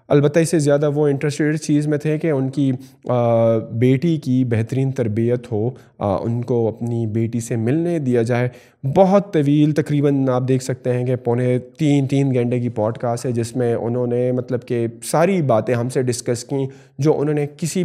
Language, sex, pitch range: Urdu, male, 120-145 Hz